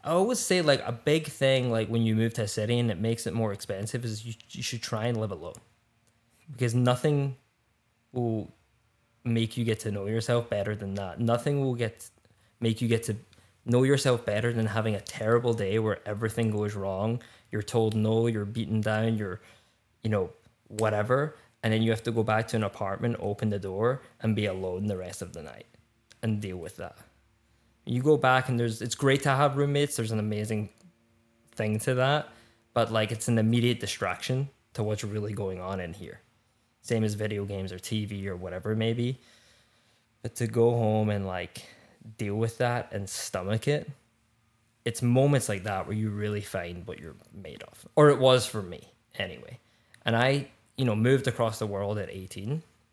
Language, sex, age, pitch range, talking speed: English, male, 20-39, 105-120 Hz, 195 wpm